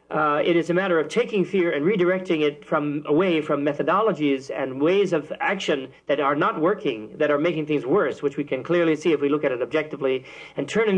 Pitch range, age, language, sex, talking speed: 145-165 Hz, 40-59, English, male, 225 wpm